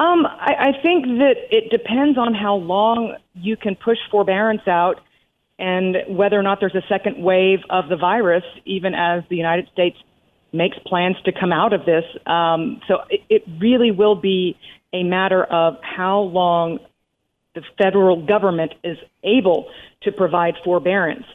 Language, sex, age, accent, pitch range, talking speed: English, female, 40-59, American, 175-220 Hz, 165 wpm